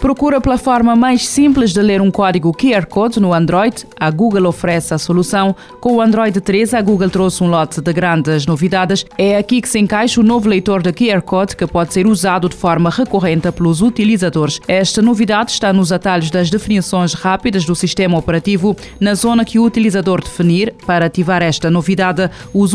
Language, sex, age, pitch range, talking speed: Portuguese, female, 20-39, 175-215 Hz, 190 wpm